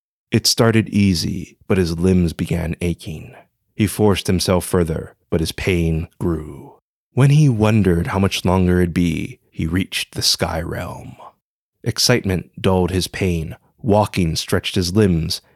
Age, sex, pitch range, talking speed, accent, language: 30-49, male, 85-105 Hz, 145 wpm, American, English